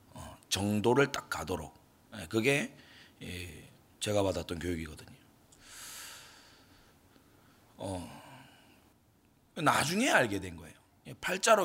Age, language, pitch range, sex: 30-49, Korean, 100-140 Hz, male